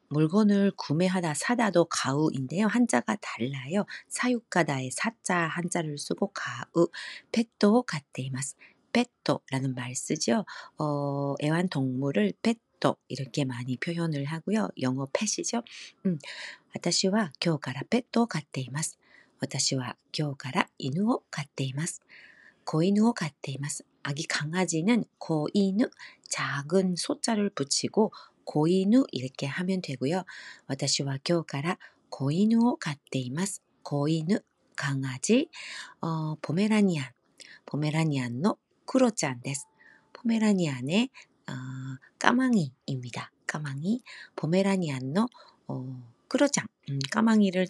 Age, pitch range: 40-59, 140-200 Hz